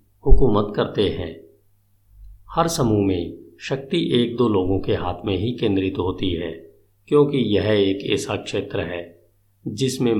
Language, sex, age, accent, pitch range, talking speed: Hindi, male, 50-69, native, 95-115 Hz, 155 wpm